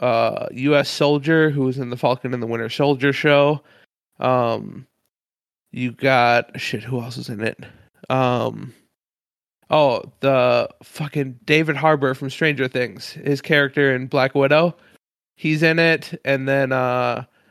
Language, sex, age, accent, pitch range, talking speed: English, male, 20-39, American, 125-150 Hz, 145 wpm